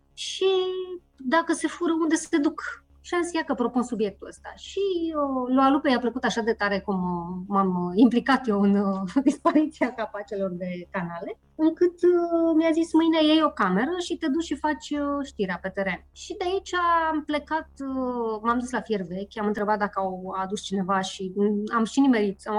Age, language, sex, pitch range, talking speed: 20-39, Romanian, female, 205-310 Hz, 175 wpm